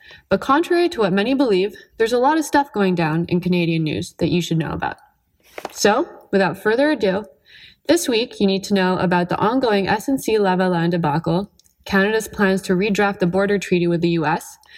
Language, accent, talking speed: English, American, 190 wpm